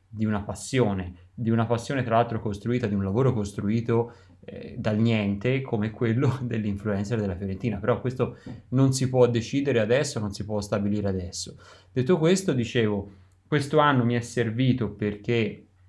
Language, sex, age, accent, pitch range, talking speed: Italian, male, 20-39, native, 100-120 Hz, 160 wpm